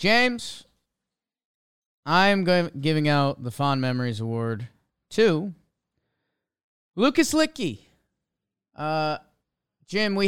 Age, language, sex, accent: 30-49, English, male, American